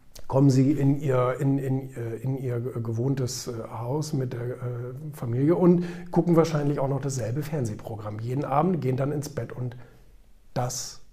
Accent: German